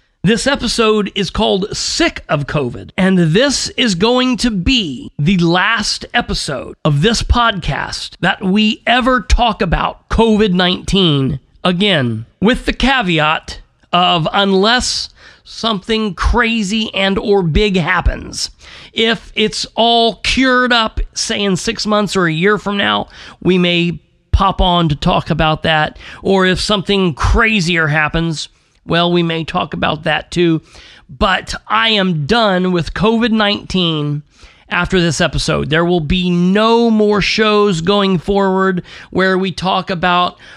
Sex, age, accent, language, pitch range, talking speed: male, 40-59, American, English, 175-225 Hz, 135 wpm